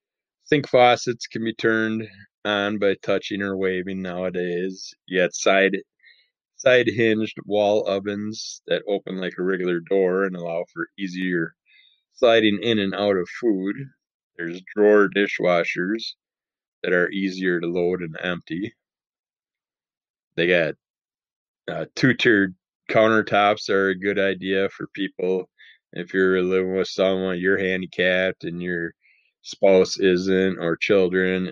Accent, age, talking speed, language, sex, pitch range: American, 20-39, 130 wpm, English, male, 90-100 Hz